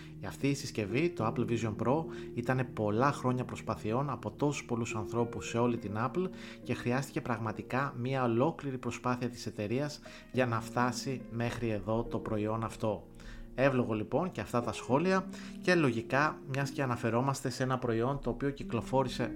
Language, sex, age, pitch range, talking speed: Greek, male, 30-49, 115-140 Hz, 165 wpm